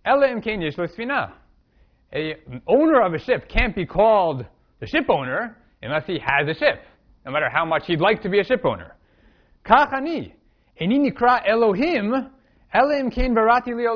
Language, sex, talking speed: English, male, 115 wpm